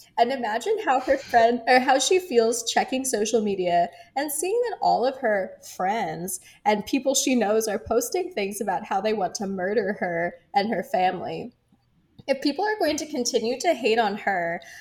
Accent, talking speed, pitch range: American, 185 wpm, 200-265 Hz